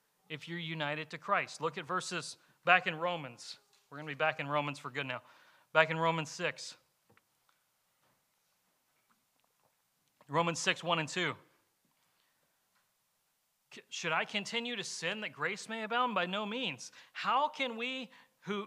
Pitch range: 160-215 Hz